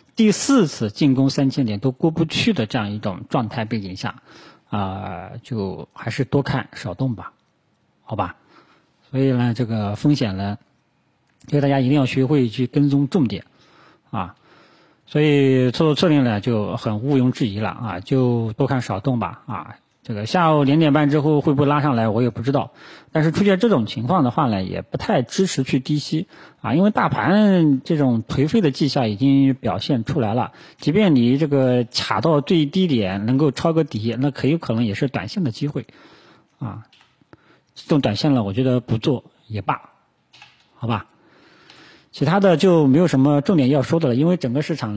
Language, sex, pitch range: Chinese, male, 115-150 Hz